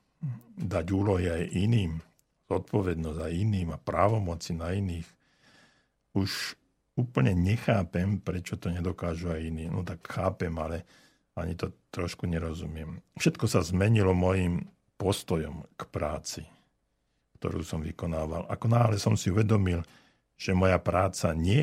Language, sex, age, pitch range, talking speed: Slovak, male, 60-79, 85-105 Hz, 130 wpm